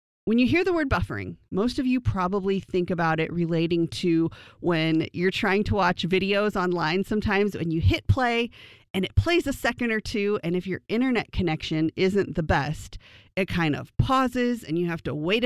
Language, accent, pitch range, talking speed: English, American, 165-215 Hz, 200 wpm